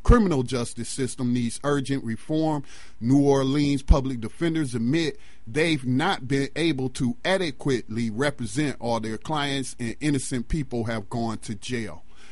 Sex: male